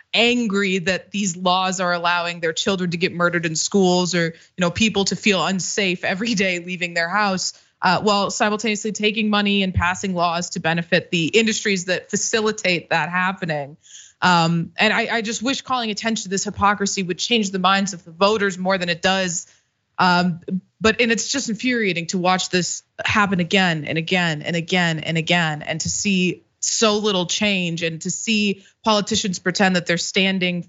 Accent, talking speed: American, 185 wpm